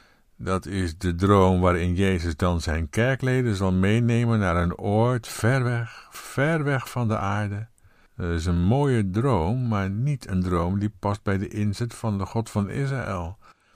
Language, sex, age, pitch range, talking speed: Dutch, male, 50-69, 90-120 Hz, 175 wpm